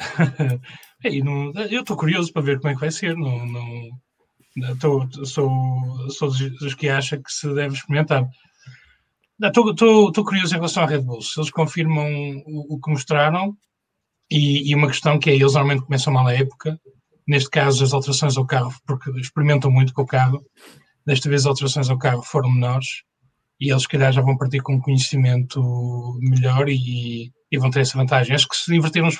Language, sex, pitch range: English, male, 130-150 Hz